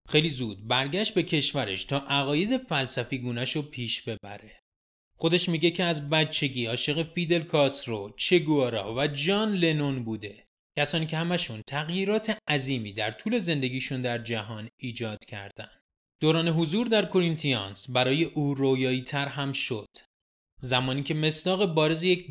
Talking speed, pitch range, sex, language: 135 wpm, 120-165 Hz, male, Persian